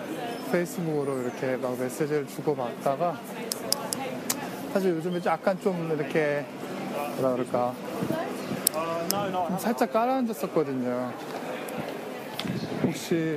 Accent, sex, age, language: native, male, 20-39, Korean